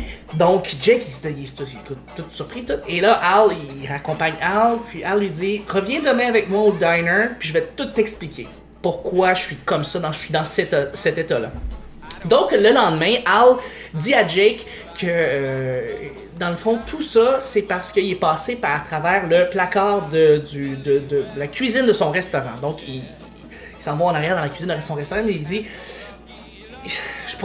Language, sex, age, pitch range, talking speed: English, male, 20-39, 150-210 Hz, 205 wpm